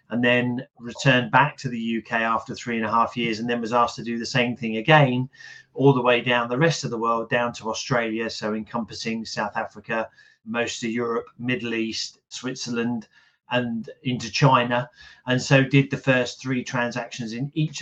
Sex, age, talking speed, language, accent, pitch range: male, 30-49, 190 wpm, English, British, 120-140 Hz